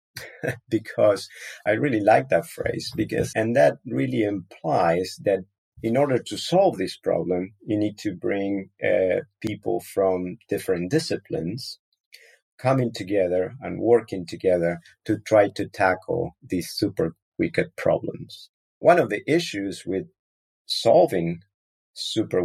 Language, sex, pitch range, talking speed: English, male, 85-100 Hz, 125 wpm